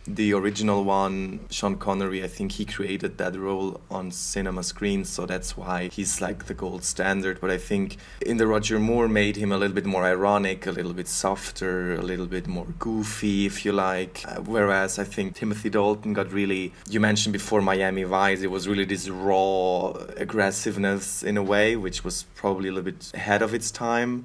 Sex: male